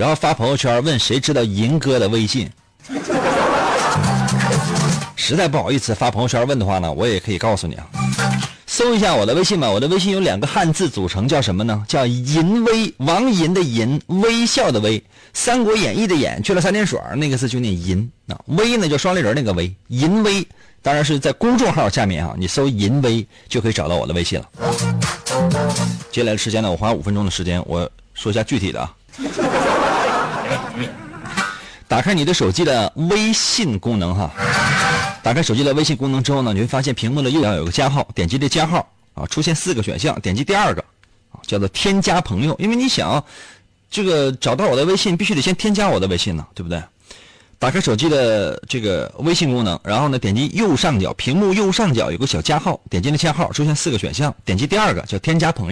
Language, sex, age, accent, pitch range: Chinese, male, 30-49, native, 100-170 Hz